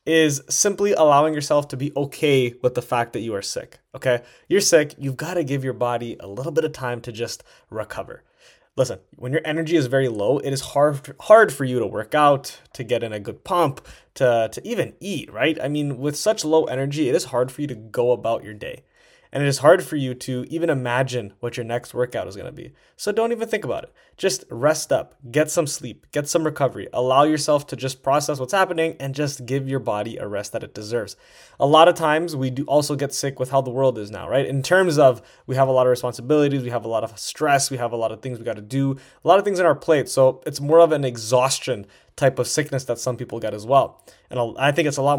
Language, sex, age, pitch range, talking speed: English, male, 20-39, 125-155 Hz, 255 wpm